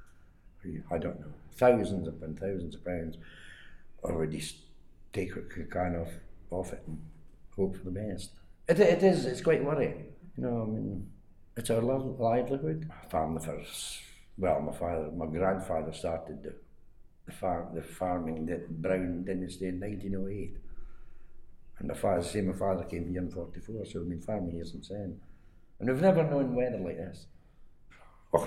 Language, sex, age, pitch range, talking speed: English, male, 60-79, 85-105 Hz, 175 wpm